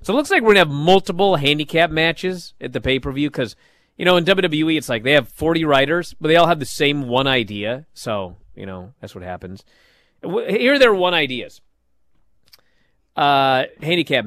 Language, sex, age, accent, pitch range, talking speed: English, male, 40-59, American, 105-170 Hz, 195 wpm